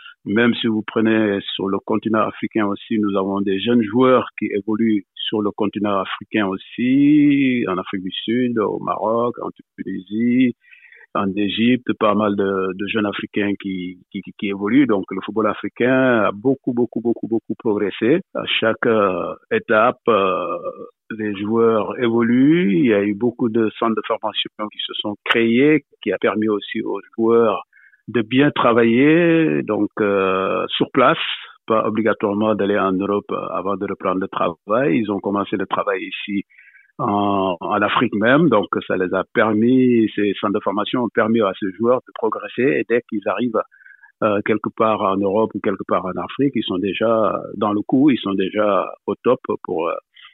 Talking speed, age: 175 wpm, 50-69